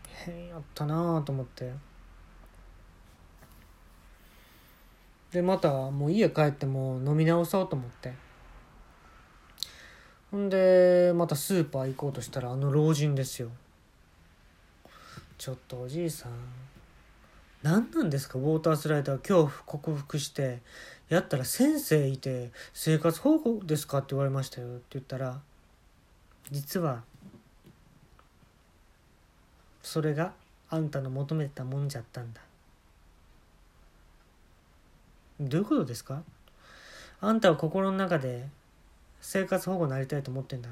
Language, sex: Japanese, male